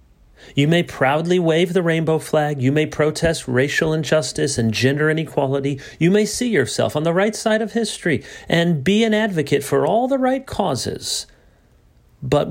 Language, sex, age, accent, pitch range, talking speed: English, male, 40-59, American, 130-185 Hz, 170 wpm